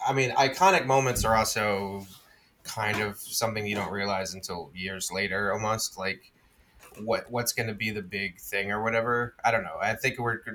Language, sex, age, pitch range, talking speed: English, male, 20-39, 100-120 Hz, 195 wpm